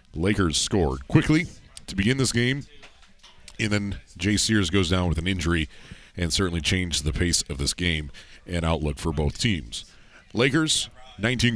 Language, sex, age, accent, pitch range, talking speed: English, male, 40-59, American, 85-110 Hz, 160 wpm